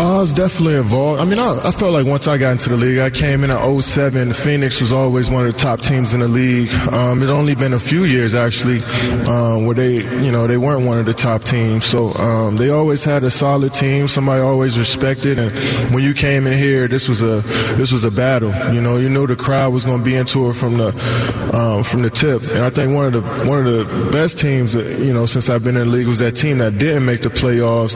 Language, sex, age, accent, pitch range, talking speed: English, male, 20-39, American, 115-135 Hz, 260 wpm